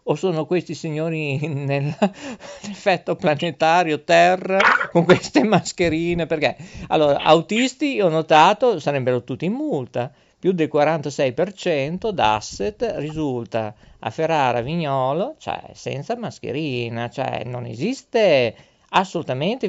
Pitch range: 135-195 Hz